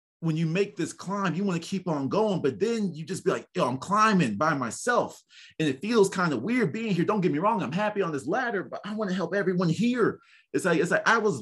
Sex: male